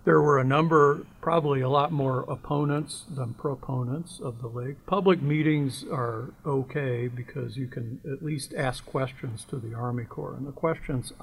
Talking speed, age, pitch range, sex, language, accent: 170 wpm, 50-69, 120-145 Hz, male, English, American